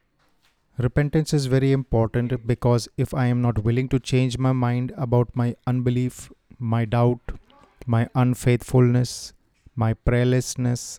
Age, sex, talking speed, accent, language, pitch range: 30-49, male, 125 wpm, native, Hindi, 115-130 Hz